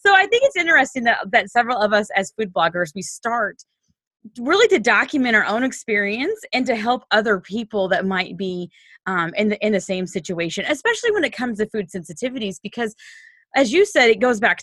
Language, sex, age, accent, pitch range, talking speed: English, female, 20-39, American, 190-265 Hz, 205 wpm